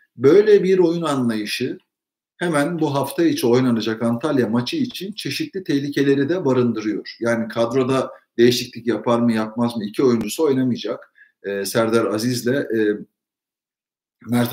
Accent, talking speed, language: native, 130 wpm, Turkish